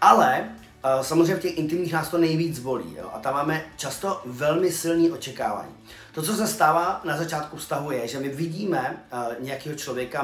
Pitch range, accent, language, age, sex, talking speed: 125-165 Hz, native, Czech, 30-49, male, 190 wpm